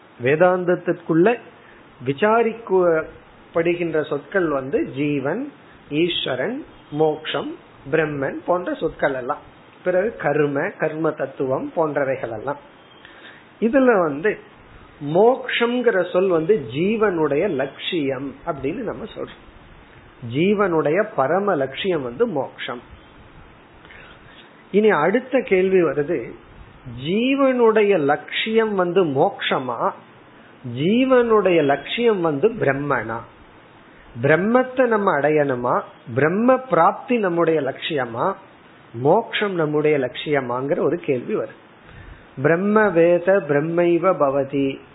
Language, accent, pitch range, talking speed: Tamil, native, 140-200 Hz, 75 wpm